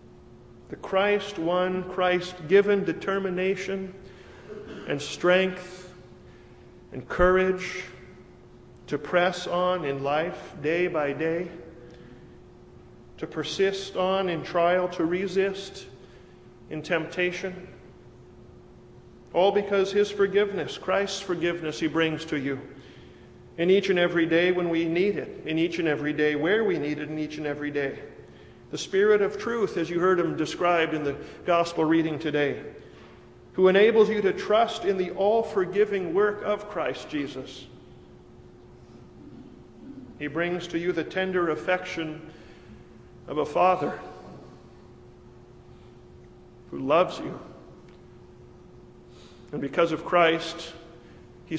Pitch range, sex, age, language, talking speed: 150-185 Hz, male, 40-59, English, 120 wpm